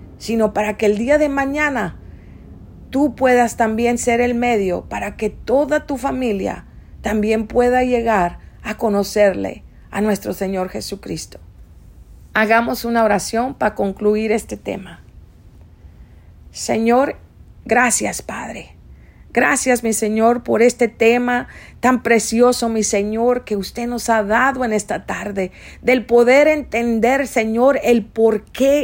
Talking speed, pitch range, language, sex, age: 125 wpm, 215-265 Hz, English, female, 50-69